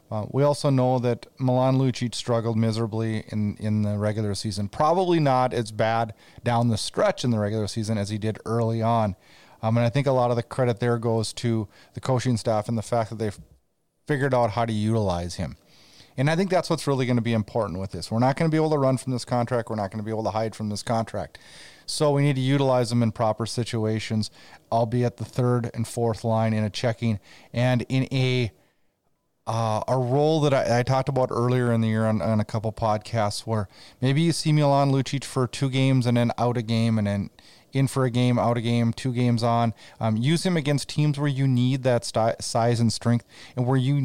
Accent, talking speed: American, 230 wpm